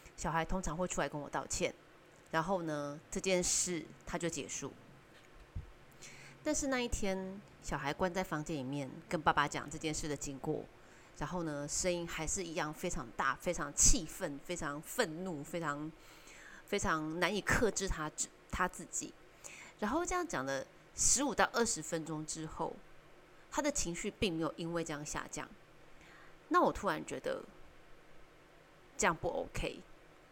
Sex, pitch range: female, 155-195 Hz